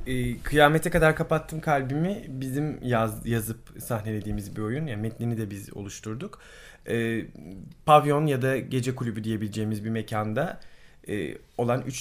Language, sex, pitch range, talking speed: Turkish, male, 110-140 Hz, 125 wpm